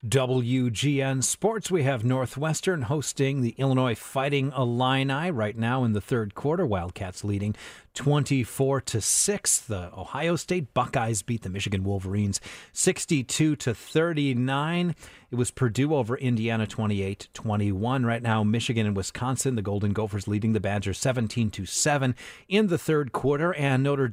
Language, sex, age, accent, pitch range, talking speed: English, male, 40-59, American, 105-140 Hz, 130 wpm